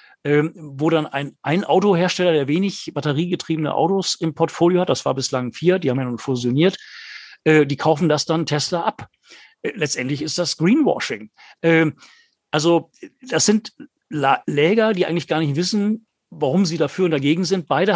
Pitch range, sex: 140-185 Hz, male